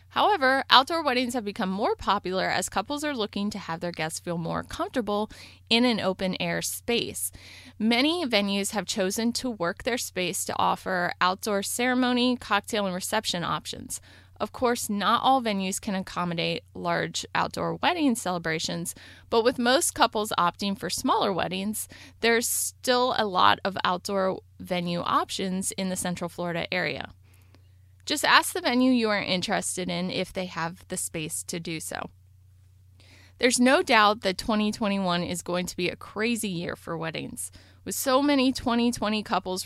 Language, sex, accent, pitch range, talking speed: English, female, American, 170-230 Hz, 160 wpm